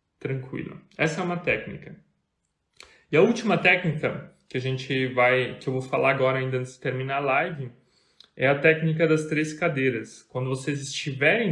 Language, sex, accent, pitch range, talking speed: Portuguese, male, Brazilian, 130-170 Hz, 170 wpm